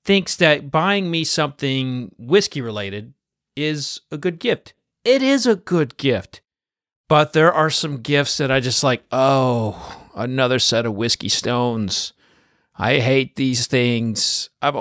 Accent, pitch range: American, 110-150 Hz